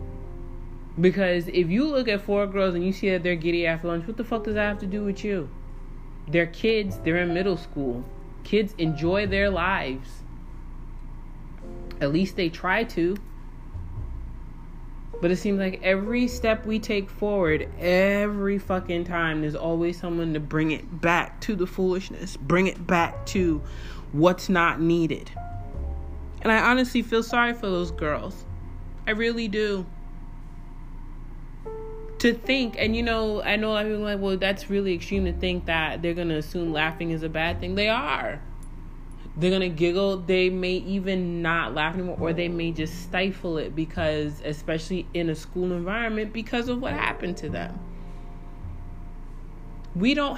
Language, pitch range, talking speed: English, 160-205 Hz, 165 wpm